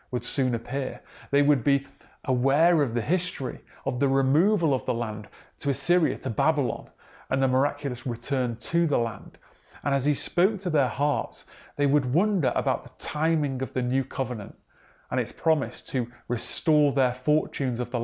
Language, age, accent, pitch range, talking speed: English, 30-49, British, 125-150 Hz, 175 wpm